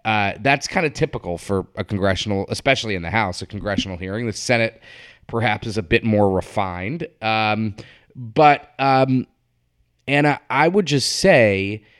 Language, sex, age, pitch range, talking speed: English, male, 30-49, 100-130 Hz, 155 wpm